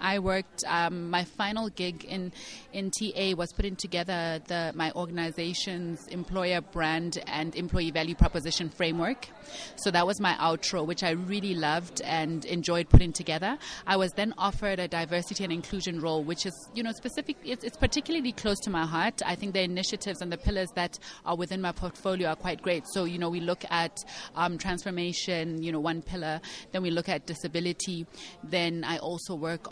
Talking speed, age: 185 wpm, 30-49